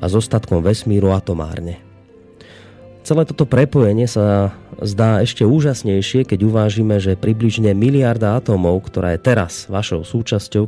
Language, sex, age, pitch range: Slovak, male, 30-49, 95-125 Hz